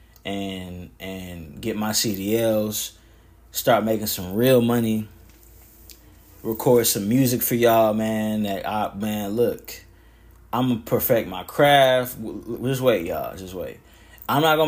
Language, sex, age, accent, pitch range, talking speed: English, male, 20-39, American, 100-115 Hz, 140 wpm